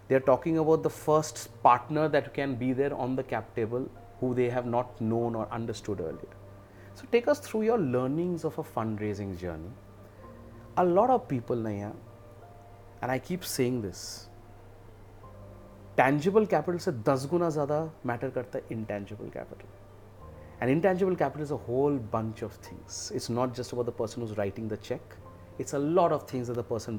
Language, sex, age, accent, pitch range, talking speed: Hindi, male, 30-49, native, 105-145 Hz, 180 wpm